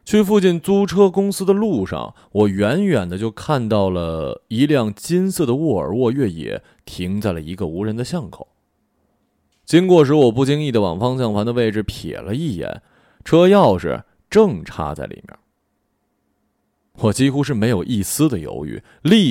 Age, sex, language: 20-39, male, Chinese